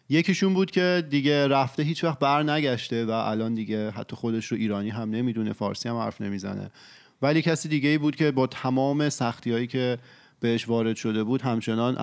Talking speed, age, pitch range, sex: 190 wpm, 30-49, 105-140 Hz, male